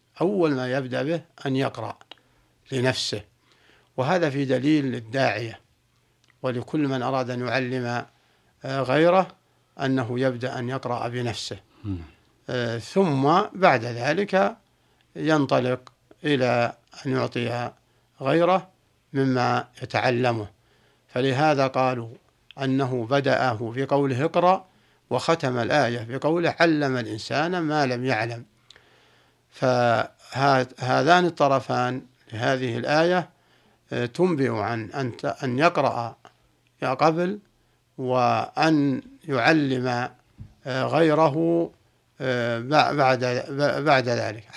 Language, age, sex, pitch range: Arabic, 60-79, male, 120-150 Hz